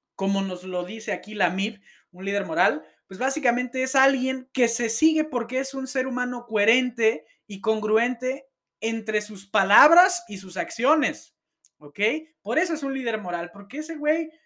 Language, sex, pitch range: Spanish, male, 195-260 Hz